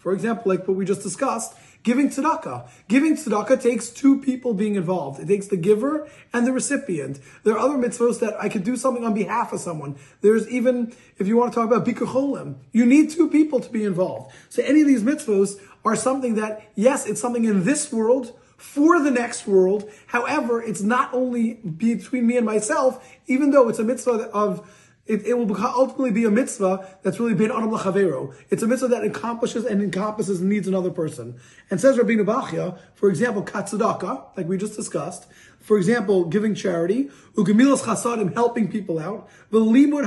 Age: 30-49